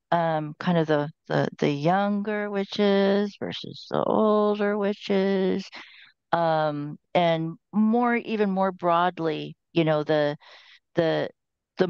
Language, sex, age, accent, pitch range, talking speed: English, female, 50-69, American, 155-195 Hz, 110 wpm